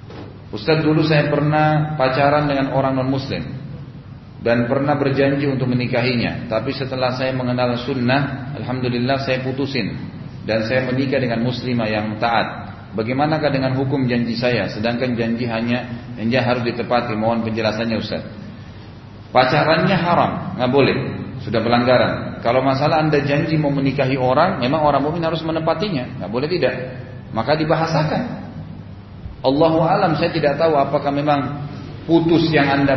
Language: Indonesian